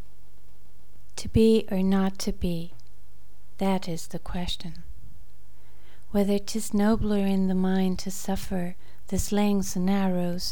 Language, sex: English, female